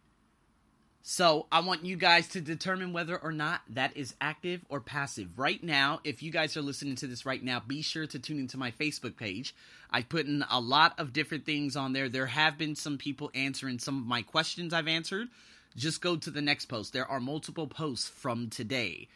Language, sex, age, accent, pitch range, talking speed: English, male, 30-49, American, 130-205 Hz, 215 wpm